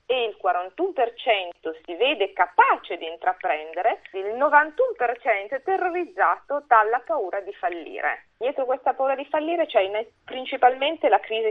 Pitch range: 195-300 Hz